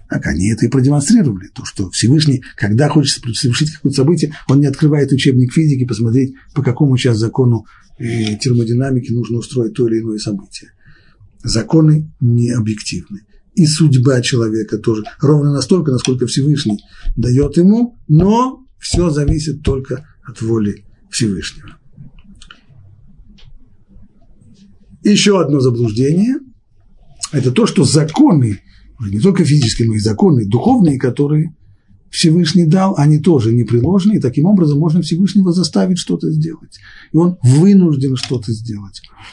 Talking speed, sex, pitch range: 125 wpm, male, 115-165 Hz